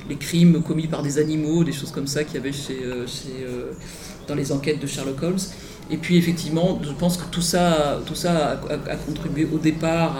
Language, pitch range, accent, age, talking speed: Italian, 135-160 Hz, French, 40-59, 190 wpm